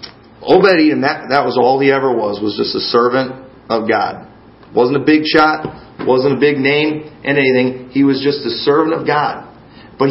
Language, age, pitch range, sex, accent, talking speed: English, 40-59, 125-160 Hz, male, American, 190 wpm